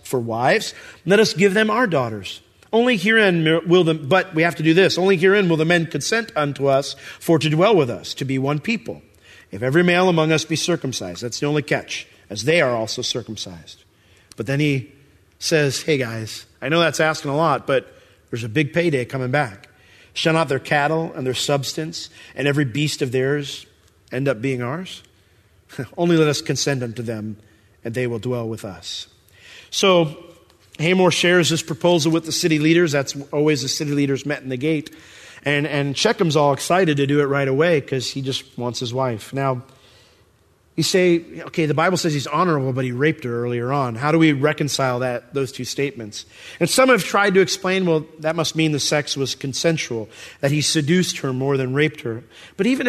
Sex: male